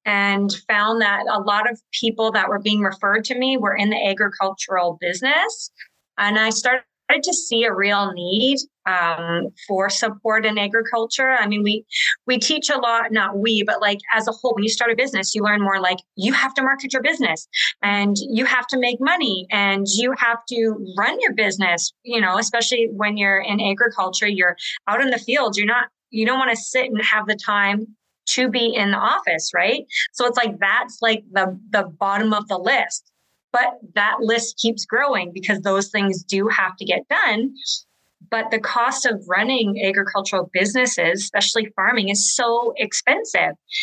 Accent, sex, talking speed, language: American, female, 190 wpm, English